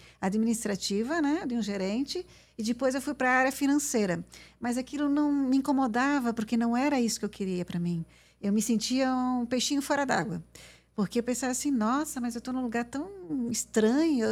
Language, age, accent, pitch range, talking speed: Portuguese, 50-69, Brazilian, 215-270 Hz, 195 wpm